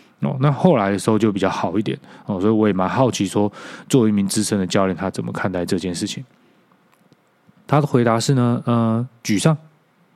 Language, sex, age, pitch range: Chinese, male, 20-39, 100-130 Hz